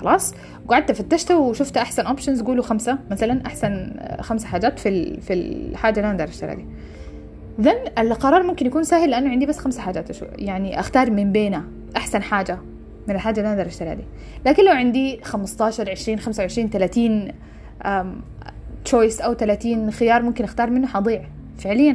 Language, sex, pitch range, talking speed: English, female, 195-265 Hz, 155 wpm